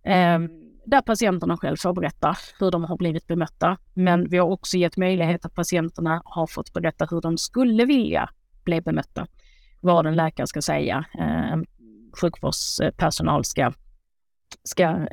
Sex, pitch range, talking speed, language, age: female, 165-190 Hz, 140 wpm, Swedish, 30-49